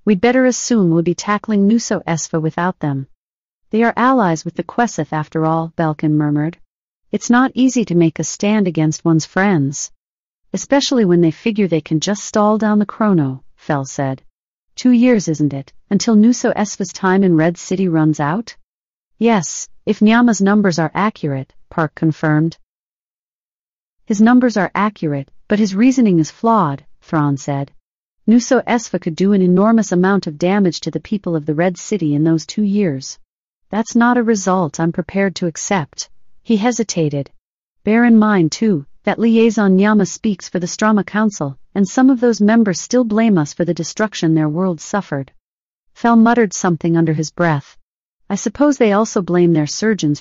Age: 40-59